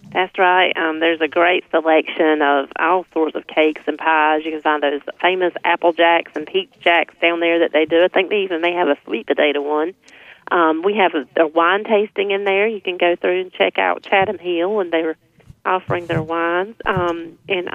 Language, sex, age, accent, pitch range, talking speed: English, female, 30-49, American, 155-190 Hz, 215 wpm